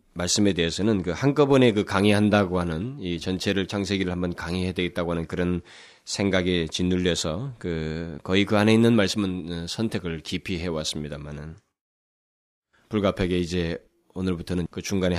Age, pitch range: 20-39, 85-100 Hz